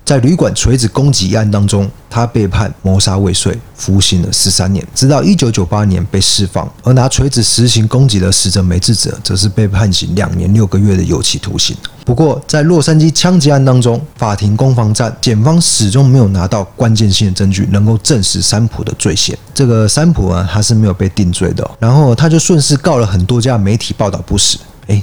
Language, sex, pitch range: Chinese, male, 100-130 Hz